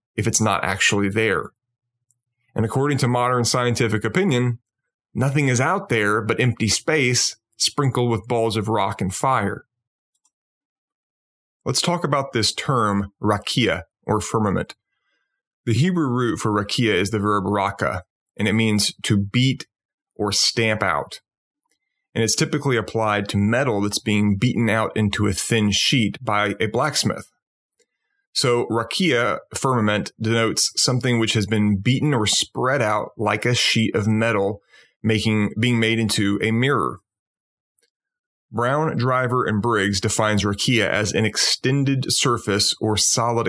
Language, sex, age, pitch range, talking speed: English, male, 30-49, 105-125 Hz, 140 wpm